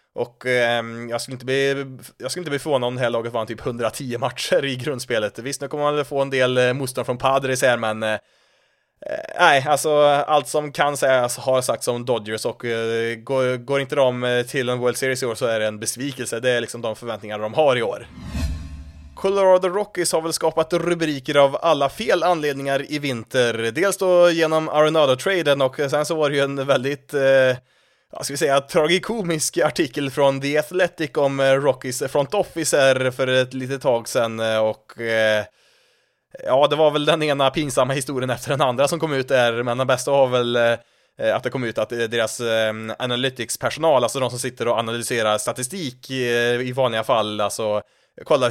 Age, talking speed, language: 20-39, 190 wpm, Swedish